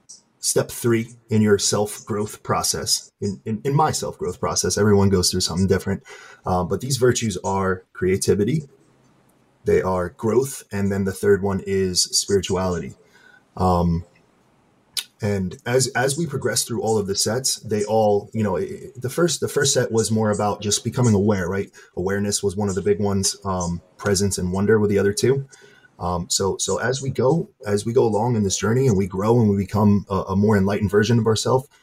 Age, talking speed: 20-39, 190 wpm